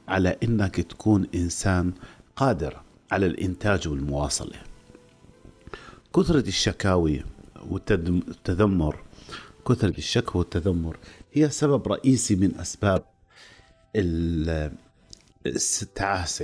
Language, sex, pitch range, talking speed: Arabic, male, 85-110 Hz, 75 wpm